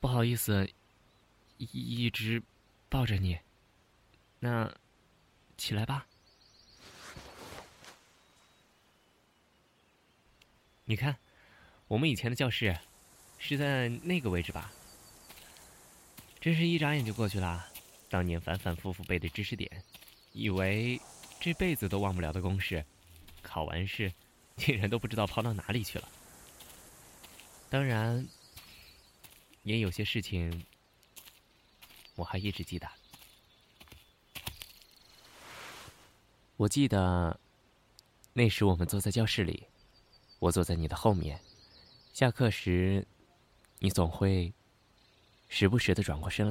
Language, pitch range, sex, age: Chinese, 90-115 Hz, male, 20-39